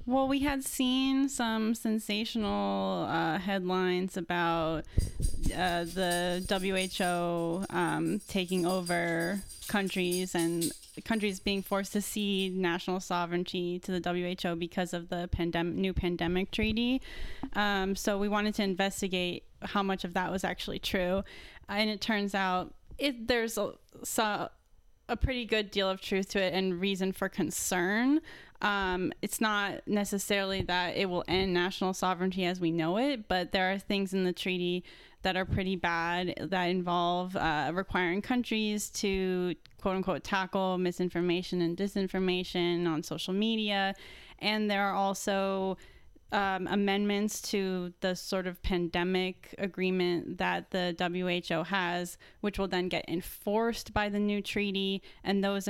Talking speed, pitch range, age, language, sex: 140 wpm, 180-200 Hz, 10-29, English, female